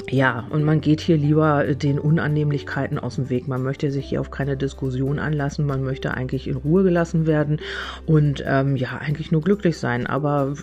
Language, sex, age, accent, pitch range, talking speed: German, female, 40-59, German, 135-165 Hz, 190 wpm